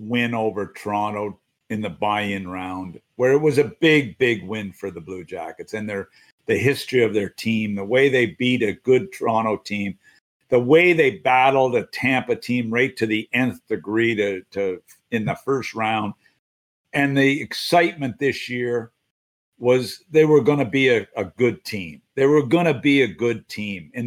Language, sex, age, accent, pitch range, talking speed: English, male, 50-69, American, 110-140 Hz, 185 wpm